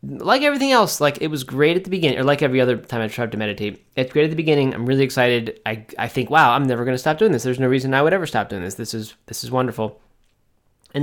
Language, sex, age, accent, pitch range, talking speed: English, male, 20-39, American, 110-135 Hz, 285 wpm